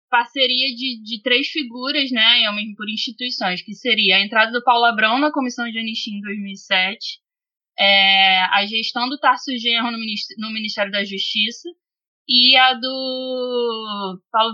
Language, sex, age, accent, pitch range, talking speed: Portuguese, female, 10-29, Brazilian, 215-265 Hz, 155 wpm